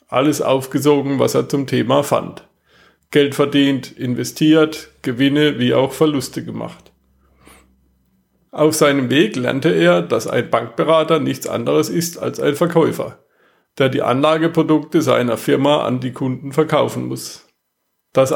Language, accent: German, German